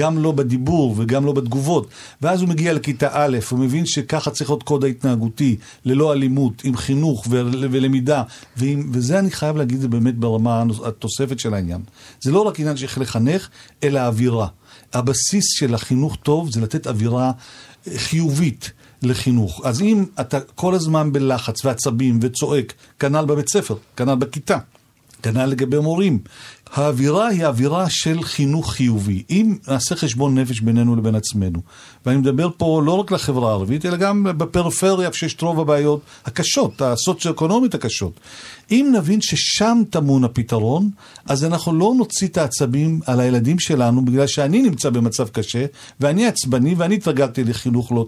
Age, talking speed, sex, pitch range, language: 50-69, 150 wpm, male, 125-160 Hz, Hebrew